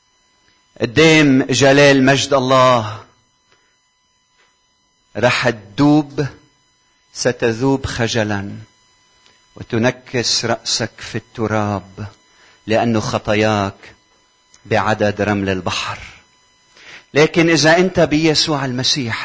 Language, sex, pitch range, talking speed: Arabic, male, 110-145 Hz, 70 wpm